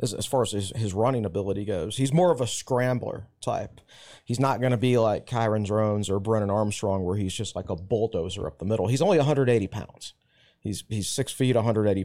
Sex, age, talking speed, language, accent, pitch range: male, 30-49, 215 wpm, English, American, 105-130 Hz